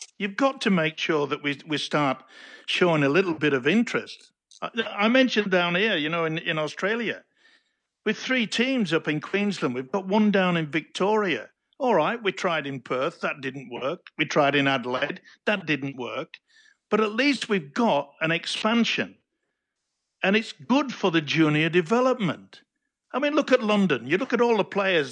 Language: English